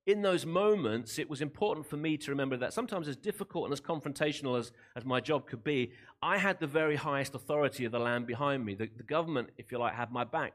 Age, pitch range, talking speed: 40-59, 125-175 Hz, 245 wpm